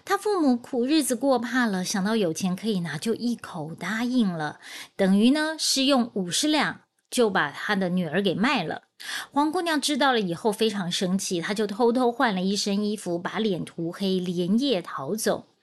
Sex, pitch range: female, 185-240 Hz